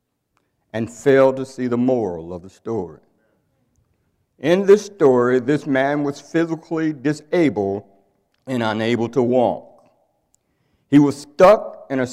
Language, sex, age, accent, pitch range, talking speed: English, male, 60-79, American, 125-170 Hz, 130 wpm